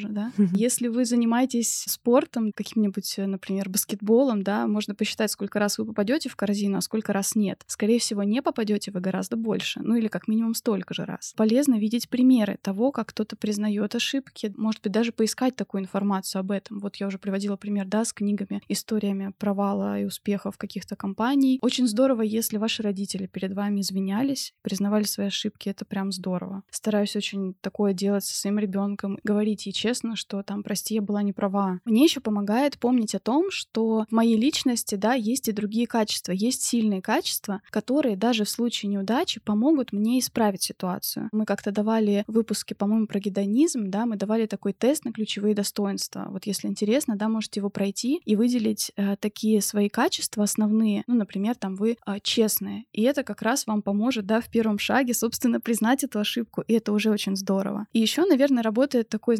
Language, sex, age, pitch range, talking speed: Russian, female, 20-39, 200-235 Hz, 185 wpm